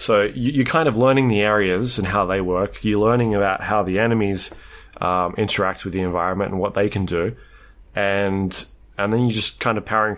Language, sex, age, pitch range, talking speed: English, male, 20-39, 95-115 Hz, 205 wpm